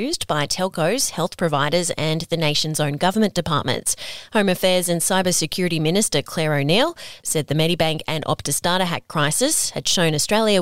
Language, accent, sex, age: English, Australian, female, 30-49